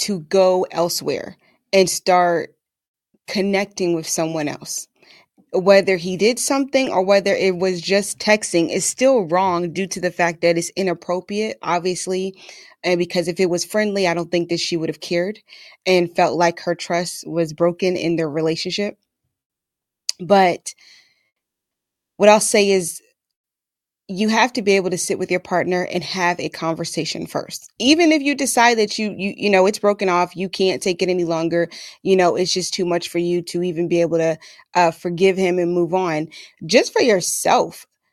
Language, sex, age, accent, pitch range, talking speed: English, female, 20-39, American, 170-195 Hz, 180 wpm